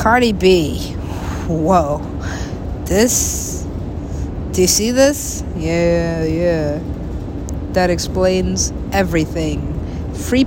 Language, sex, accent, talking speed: English, female, American, 80 wpm